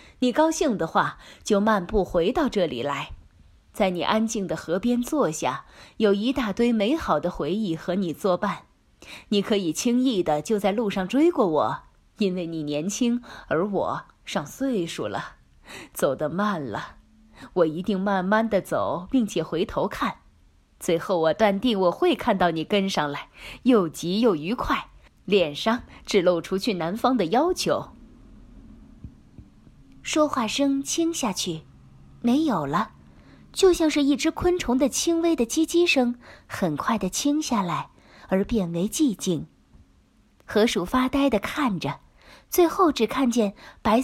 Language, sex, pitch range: Chinese, female, 195-280 Hz